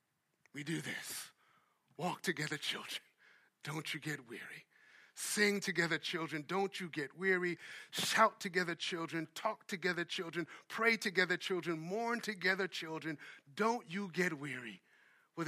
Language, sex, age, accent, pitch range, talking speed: English, male, 50-69, American, 165-200 Hz, 130 wpm